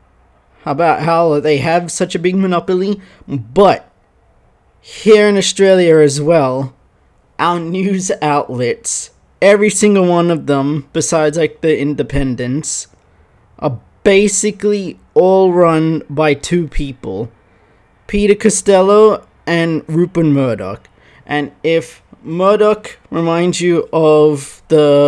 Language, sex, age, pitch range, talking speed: English, male, 20-39, 145-185 Hz, 110 wpm